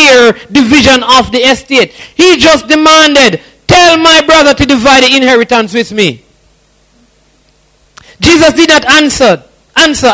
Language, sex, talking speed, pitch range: English, male, 120 wpm, 275-335 Hz